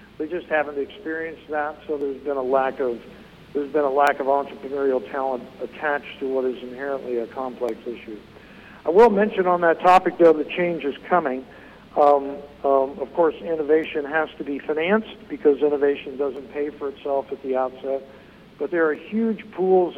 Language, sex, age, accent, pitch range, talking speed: English, male, 60-79, American, 135-160 Hz, 180 wpm